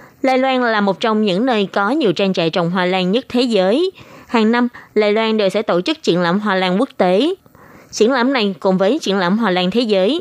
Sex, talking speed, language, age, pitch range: female, 245 wpm, Vietnamese, 20-39, 185-235 Hz